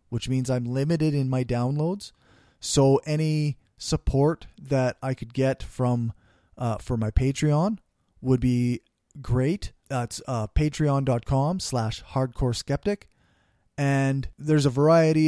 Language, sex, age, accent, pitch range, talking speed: English, male, 20-39, American, 120-150 Hz, 125 wpm